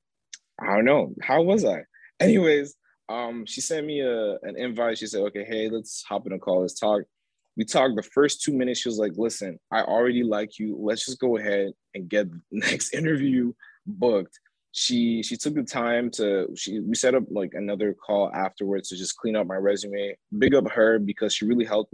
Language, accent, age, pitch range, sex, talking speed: English, American, 20-39, 100-120 Hz, male, 210 wpm